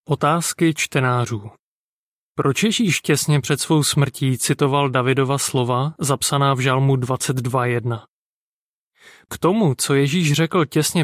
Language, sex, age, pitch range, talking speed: Czech, male, 30-49, 135-170 Hz, 115 wpm